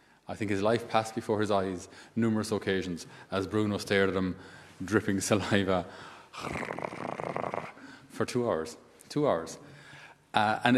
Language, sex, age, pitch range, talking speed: English, male, 30-49, 95-115 Hz, 135 wpm